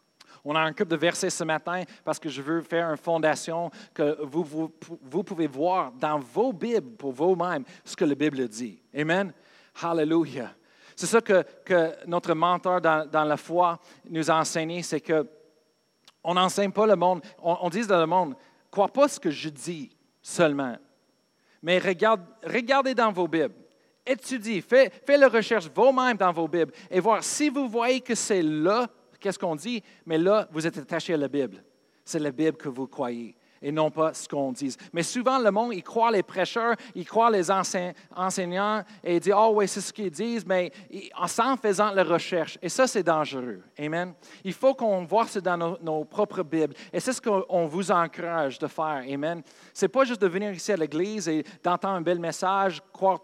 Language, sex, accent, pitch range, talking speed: French, male, Canadian, 160-210 Hz, 205 wpm